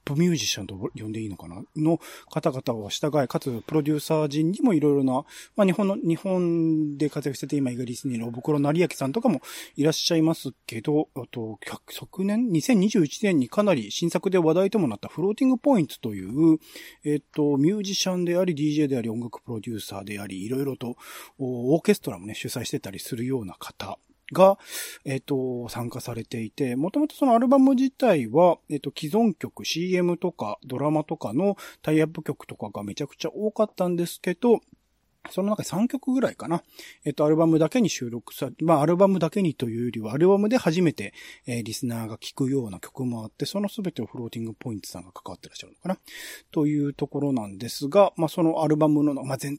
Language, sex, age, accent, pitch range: Japanese, male, 40-59, native, 125-175 Hz